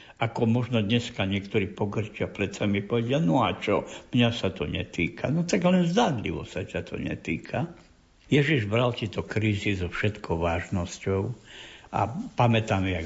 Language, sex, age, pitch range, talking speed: Slovak, male, 60-79, 100-130 Hz, 155 wpm